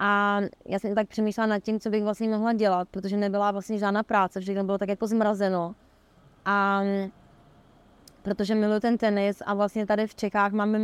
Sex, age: female, 20-39